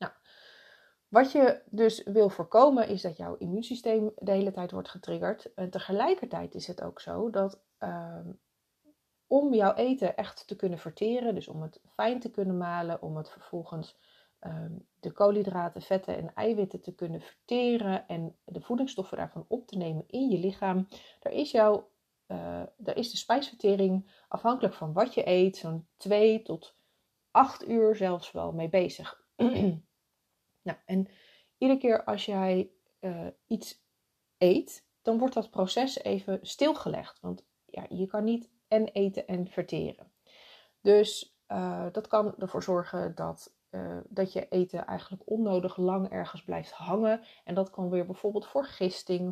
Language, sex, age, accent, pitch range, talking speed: Dutch, female, 30-49, Dutch, 180-220 Hz, 155 wpm